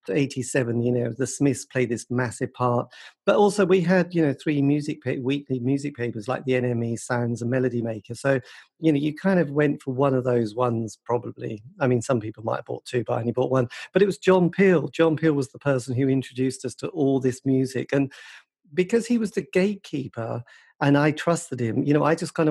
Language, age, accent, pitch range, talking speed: English, 40-59, British, 125-155 Hz, 230 wpm